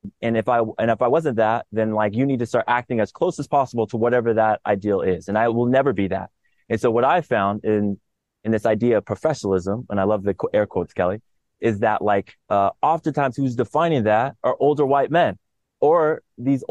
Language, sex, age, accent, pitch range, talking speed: English, male, 20-39, American, 100-130 Hz, 225 wpm